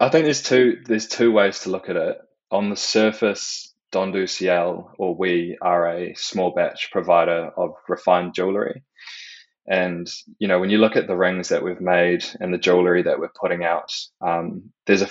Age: 20-39